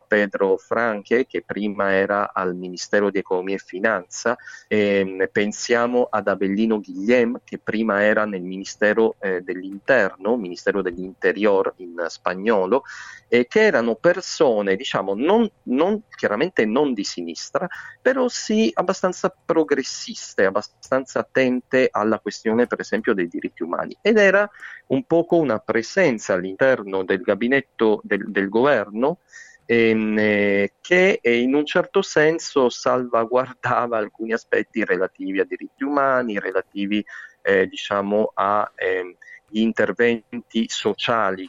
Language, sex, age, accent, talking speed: Italian, male, 40-59, native, 120 wpm